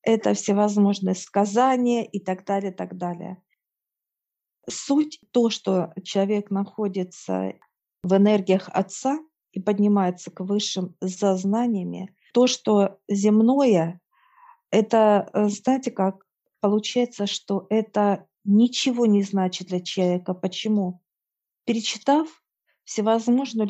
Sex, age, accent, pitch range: female, 40-59, native, 195-225 Hz